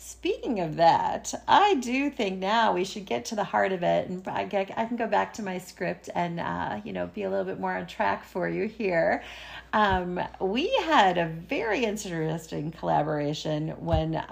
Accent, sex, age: American, female, 40-59